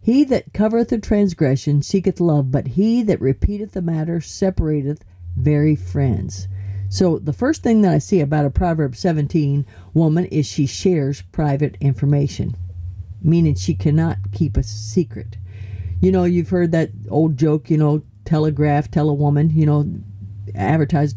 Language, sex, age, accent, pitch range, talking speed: English, female, 50-69, American, 120-175 Hz, 155 wpm